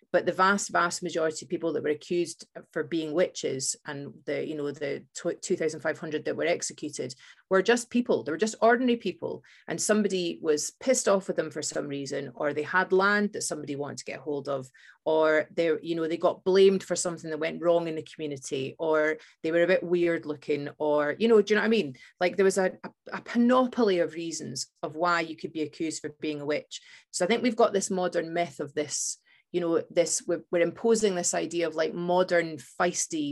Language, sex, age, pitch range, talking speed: English, female, 30-49, 155-195 Hz, 225 wpm